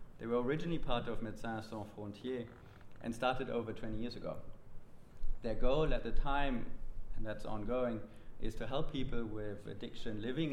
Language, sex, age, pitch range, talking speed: English, male, 30-49, 100-115 Hz, 165 wpm